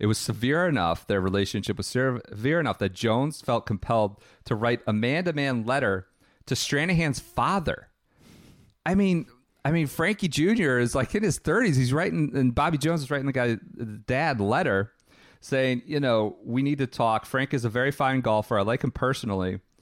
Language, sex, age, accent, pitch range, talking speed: English, male, 40-59, American, 115-150 Hz, 180 wpm